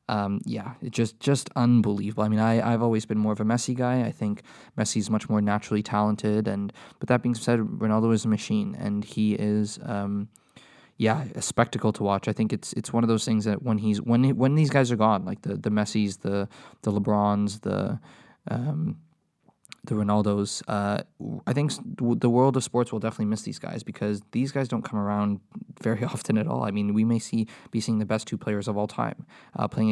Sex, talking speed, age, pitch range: male, 220 wpm, 20-39, 105-120 Hz